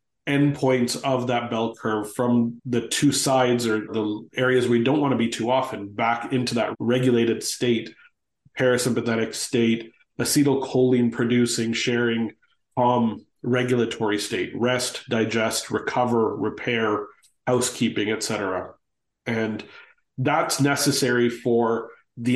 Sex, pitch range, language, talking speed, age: male, 115-125 Hz, English, 115 wpm, 30-49